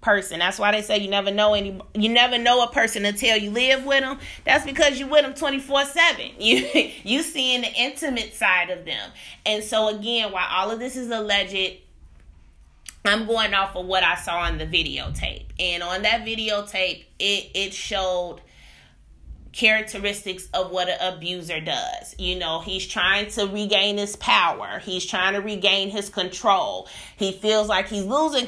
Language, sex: English, female